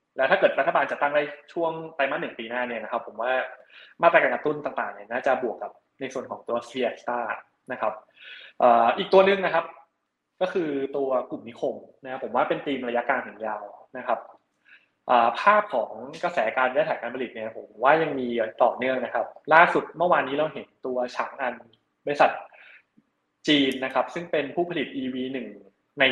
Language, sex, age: Thai, male, 20-39